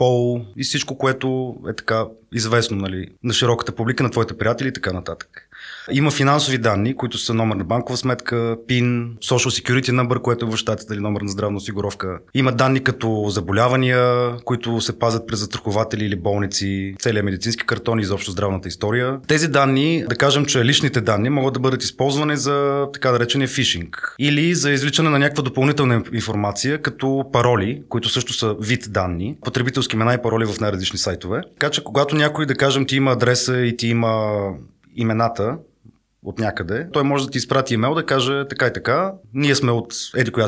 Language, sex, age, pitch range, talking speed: Bulgarian, male, 30-49, 110-135 Hz, 180 wpm